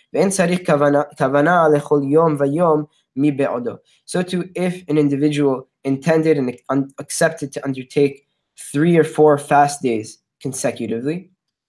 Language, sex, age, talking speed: English, male, 10-29, 80 wpm